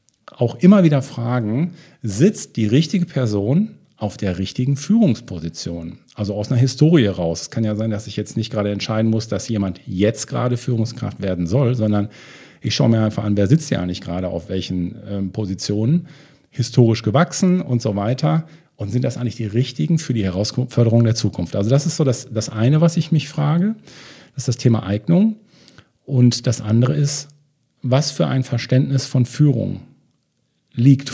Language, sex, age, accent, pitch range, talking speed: German, male, 50-69, German, 105-140 Hz, 175 wpm